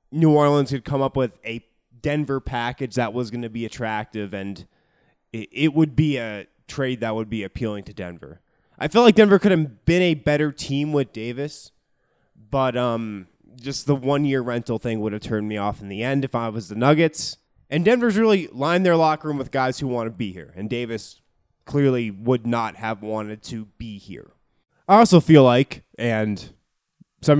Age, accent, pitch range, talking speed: 20-39, American, 110-145 Hz, 195 wpm